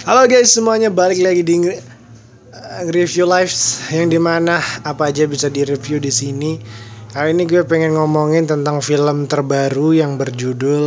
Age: 20-39